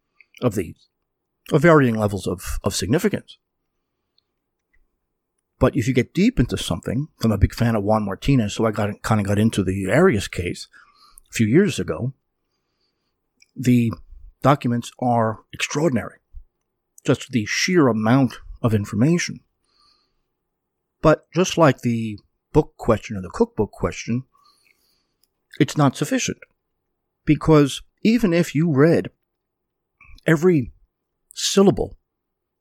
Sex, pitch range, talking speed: male, 115-155 Hz, 125 wpm